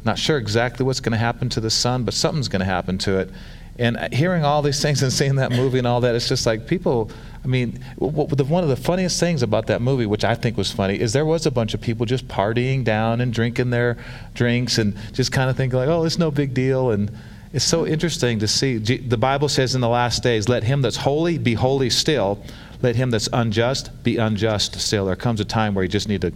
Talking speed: 250 wpm